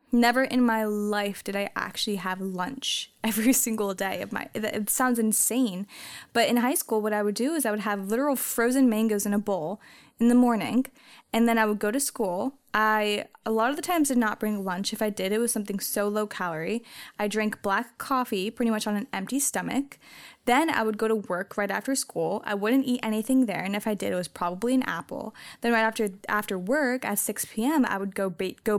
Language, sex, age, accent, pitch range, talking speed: English, female, 10-29, American, 210-255 Hz, 225 wpm